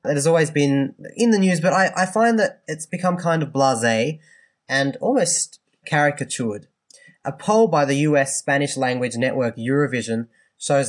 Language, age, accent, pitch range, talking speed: English, 20-39, Australian, 130-155 Hz, 165 wpm